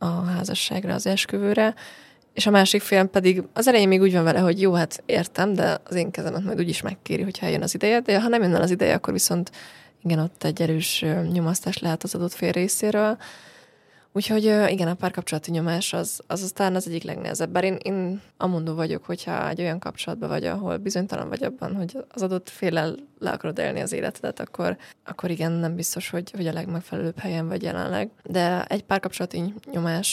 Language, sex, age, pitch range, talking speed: Hungarian, female, 20-39, 170-195 Hz, 195 wpm